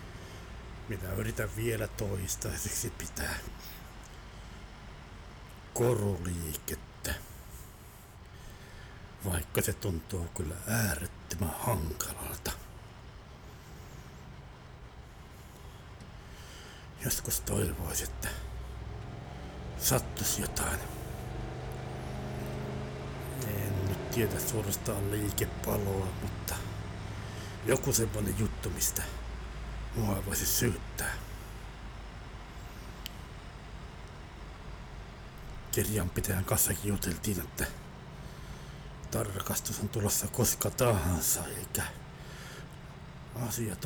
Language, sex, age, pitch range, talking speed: Finnish, male, 60-79, 90-115 Hz, 55 wpm